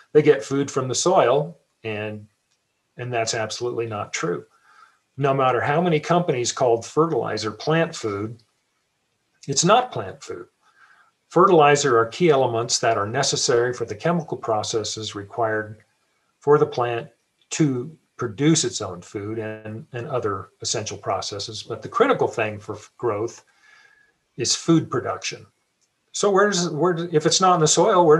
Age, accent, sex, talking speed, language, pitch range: 40-59, American, male, 145 wpm, English, 115-155 Hz